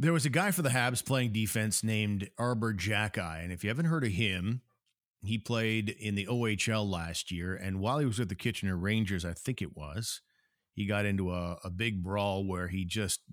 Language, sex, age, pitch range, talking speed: English, male, 40-59, 95-120 Hz, 215 wpm